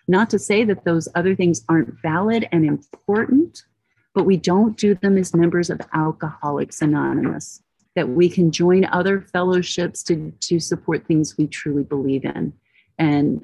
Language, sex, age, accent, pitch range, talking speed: English, female, 40-59, American, 150-180 Hz, 160 wpm